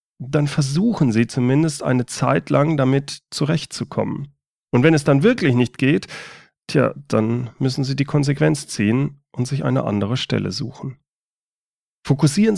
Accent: German